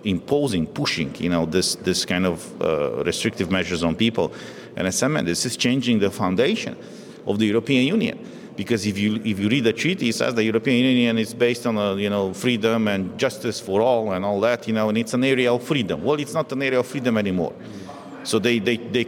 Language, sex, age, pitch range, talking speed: English, male, 50-69, 100-135 Hz, 230 wpm